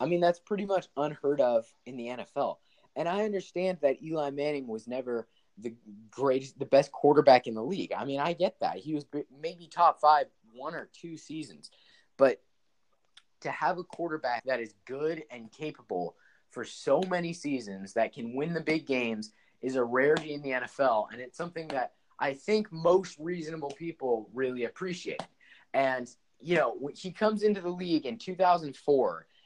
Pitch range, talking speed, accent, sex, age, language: 130-175 Hz, 175 wpm, American, male, 20-39, English